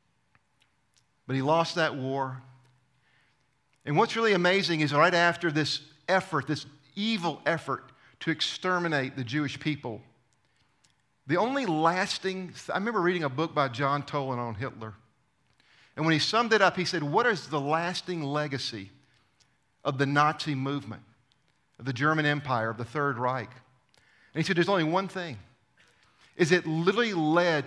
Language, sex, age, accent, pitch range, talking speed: English, male, 50-69, American, 130-165 Hz, 150 wpm